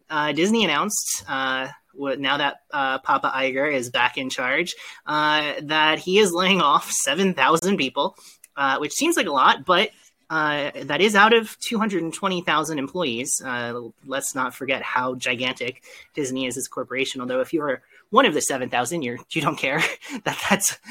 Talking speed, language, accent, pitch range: 170 wpm, English, American, 130-180 Hz